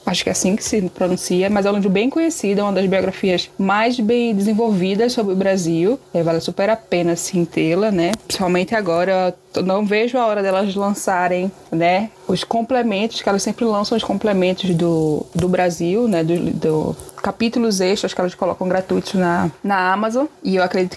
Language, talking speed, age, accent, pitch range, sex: Portuguese, 190 wpm, 10-29, Brazilian, 180-225 Hz, female